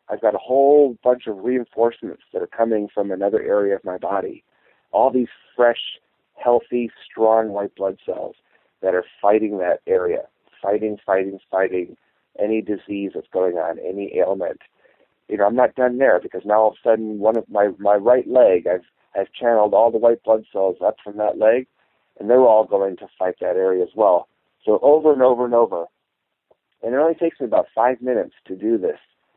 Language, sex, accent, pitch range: English, male, American, 100-125 Hz